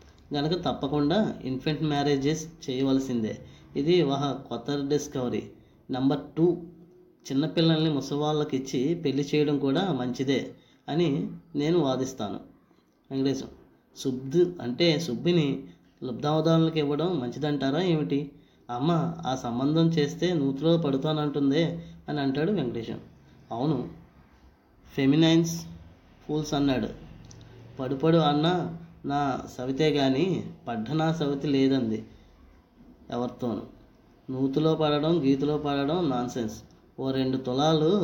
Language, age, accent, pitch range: Telugu, 20-39, native, 130-155 Hz